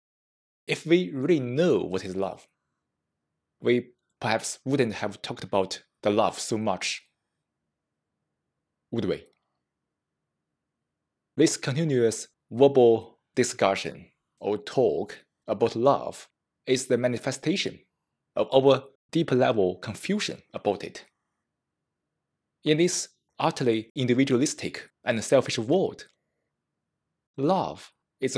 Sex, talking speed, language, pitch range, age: male, 95 wpm, English, 115-155 Hz, 20-39